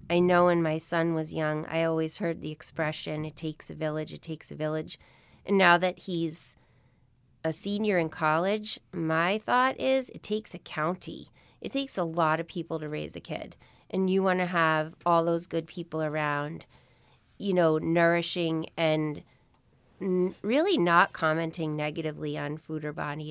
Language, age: English, 30-49